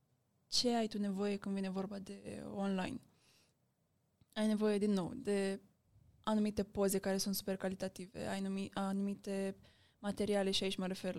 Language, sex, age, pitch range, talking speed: Romanian, female, 20-39, 195-220 Hz, 150 wpm